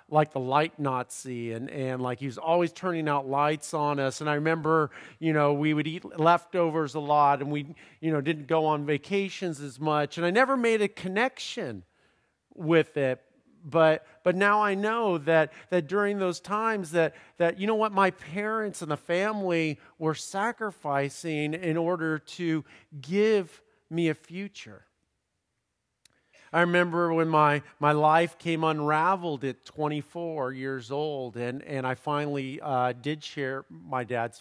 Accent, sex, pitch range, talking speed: American, male, 130-165 Hz, 165 wpm